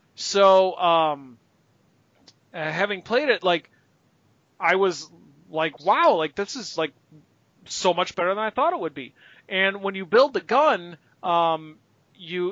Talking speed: 150 wpm